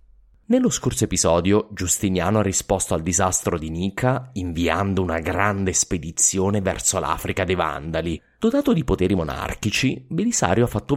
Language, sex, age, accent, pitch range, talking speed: English, male, 30-49, Italian, 90-110 Hz, 135 wpm